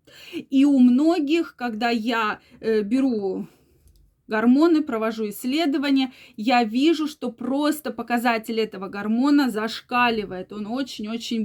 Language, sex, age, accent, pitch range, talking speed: Russian, female, 20-39, native, 225-275 Hz, 100 wpm